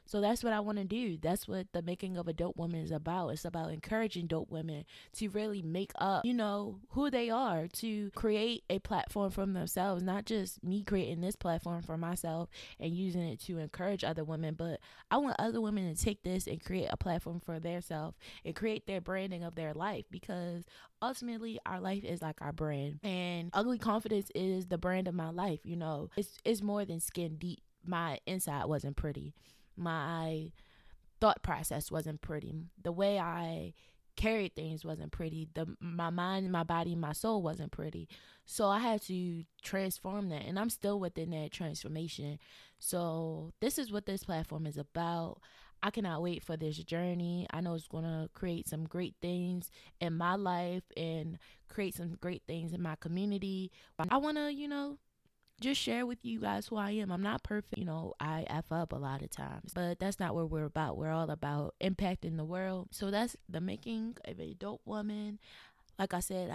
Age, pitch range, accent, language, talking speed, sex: 20-39, 165-200 Hz, American, English, 195 wpm, female